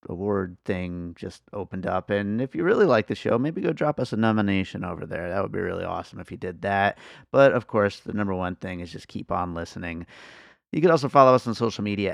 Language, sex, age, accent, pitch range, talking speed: English, male, 30-49, American, 95-120 Hz, 240 wpm